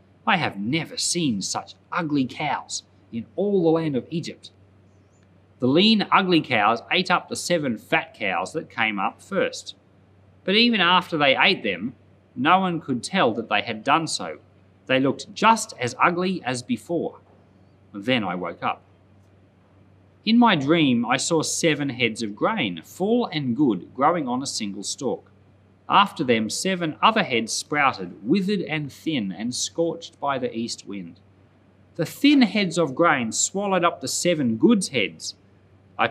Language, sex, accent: English, male, Australian